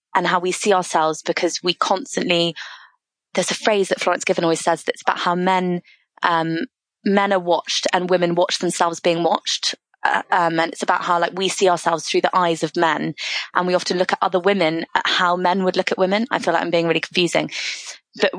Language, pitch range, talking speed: English, 170-195 Hz, 220 wpm